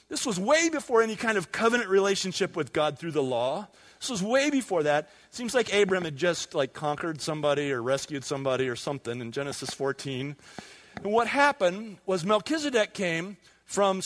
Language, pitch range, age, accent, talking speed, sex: English, 170-235 Hz, 40-59, American, 185 wpm, male